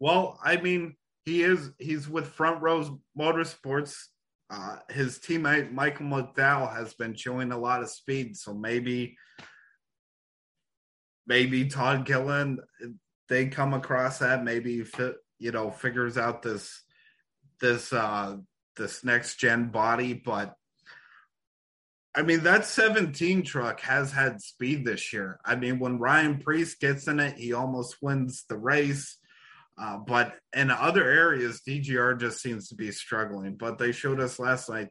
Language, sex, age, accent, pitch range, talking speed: English, male, 30-49, American, 120-145 Hz, 140 wpm